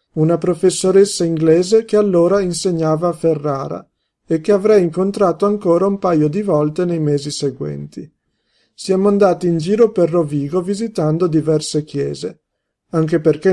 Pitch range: 155-200 Hz